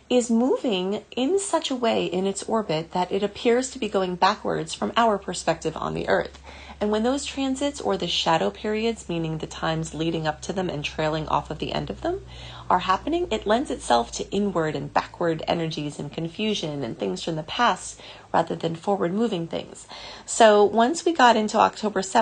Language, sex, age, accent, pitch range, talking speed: English, female, 30-49, American, 165-230 Hz, 195 wpm